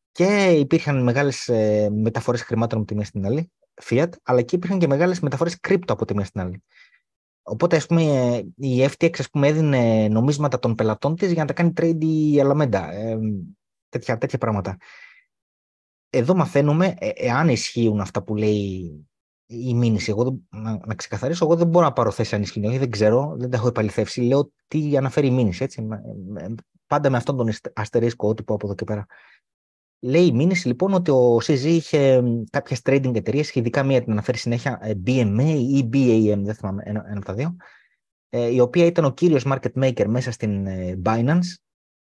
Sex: male